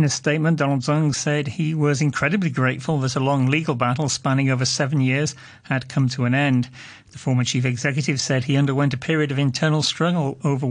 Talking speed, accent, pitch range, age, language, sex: 205 wpm, British, 130-150 Hz, 40-59, English, male